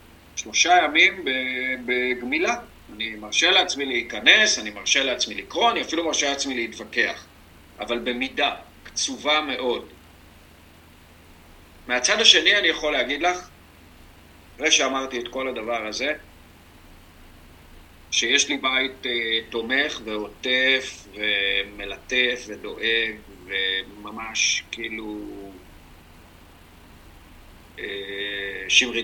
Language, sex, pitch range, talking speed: Hebrew, male, 85-125 Hz, 85 wpm